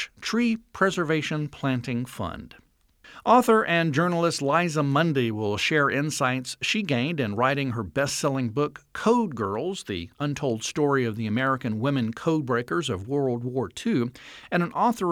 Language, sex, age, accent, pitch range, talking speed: English, male, 50-69, American, 130-180 Hz, 145 wpm